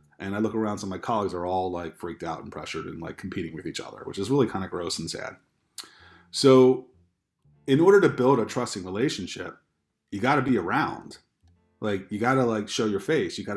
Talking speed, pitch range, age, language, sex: 225 wpm, 100-130 Hz, 30-49, English, male